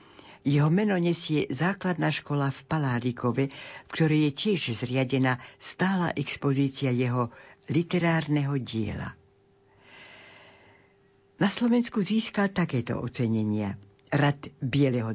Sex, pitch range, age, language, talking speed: female, 125-165 Hz, 60-79, Slovak, 95 wpm